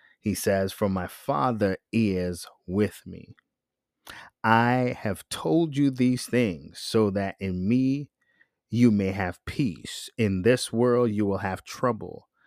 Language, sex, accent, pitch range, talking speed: English, male, American, 95-115 Hz, 140 wpm